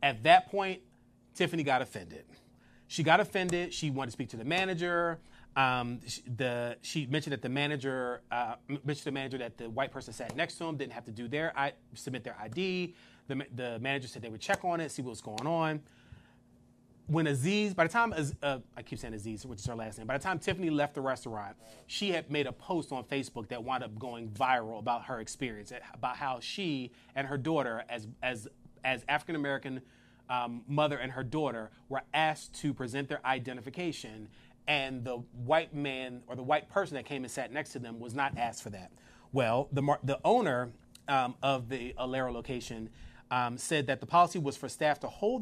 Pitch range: 120-150 Hz